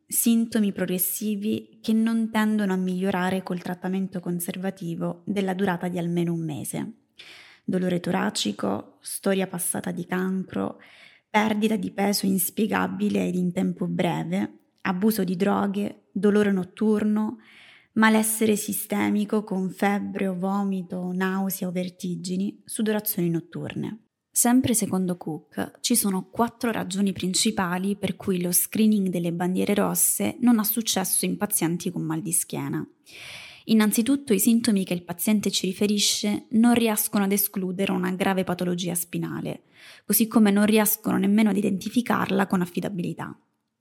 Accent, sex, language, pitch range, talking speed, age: native, female, Italian, 185-215 Hz, 130 wpm, 20-39